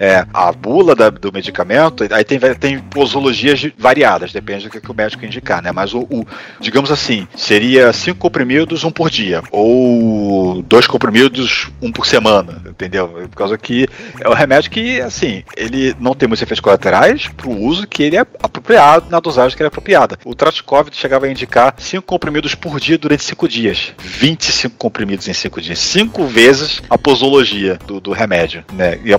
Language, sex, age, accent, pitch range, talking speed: Portuguese, male, 40-59, Brazilian, 100-145 Hz, 185 wpm